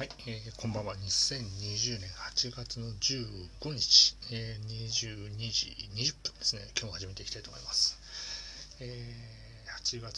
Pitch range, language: 95-120 Hz, Japanese